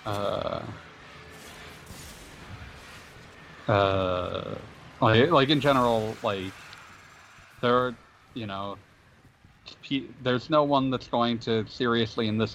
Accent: American